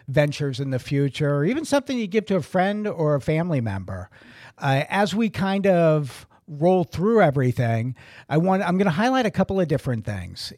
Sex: male